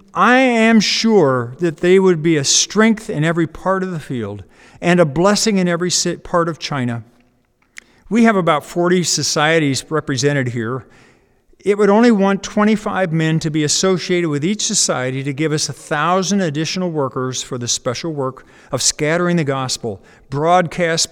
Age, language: 50-69, English